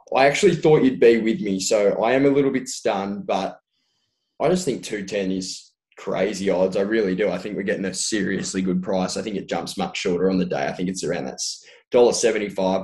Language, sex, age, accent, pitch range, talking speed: English, male, 10-29, Australian, 105-135 Hz, 230 wpm